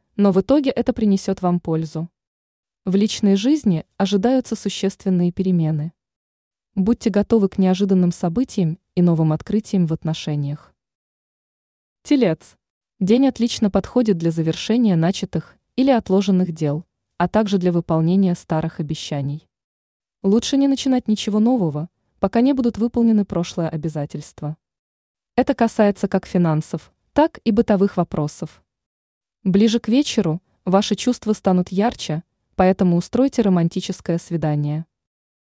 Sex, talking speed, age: female, 115 wpm, 20-39